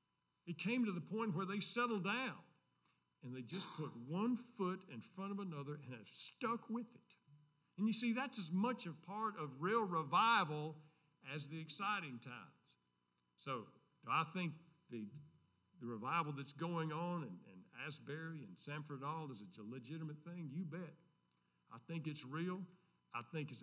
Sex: male